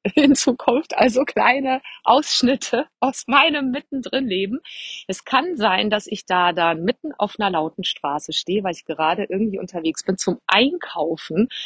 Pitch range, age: 175-245 Hz, 30-49